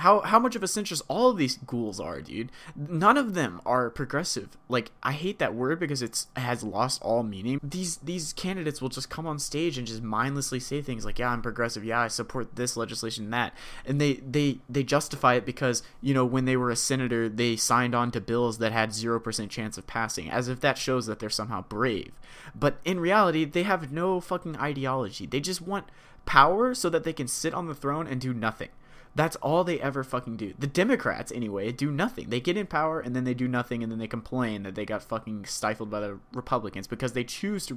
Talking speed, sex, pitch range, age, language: 230 wpm, male, 120-170 Hz, 20-39, English